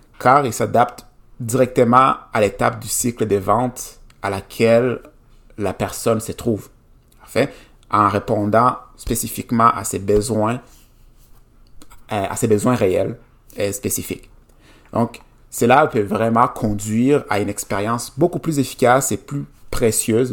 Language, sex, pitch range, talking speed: French, male, 105-125 Hz, 130 wpm